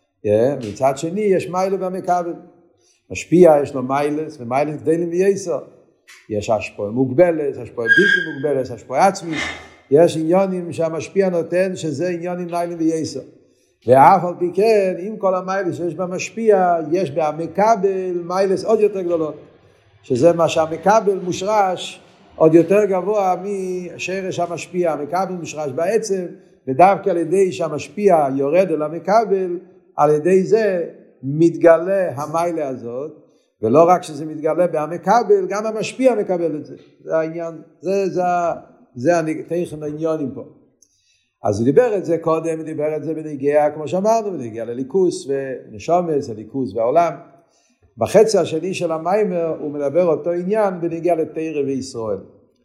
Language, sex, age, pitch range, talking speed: Hebrew, male, 50-69, 155-190 Hz, 135 wpm